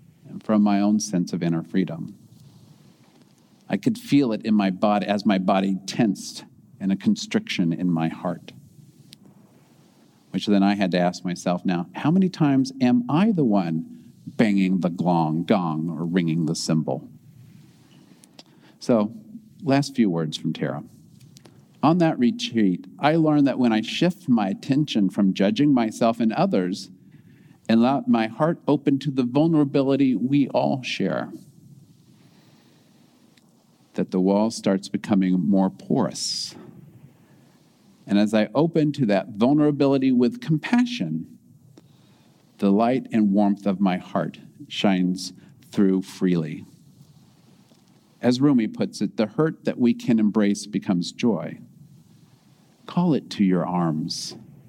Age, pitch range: 50-69, 95-145 Hz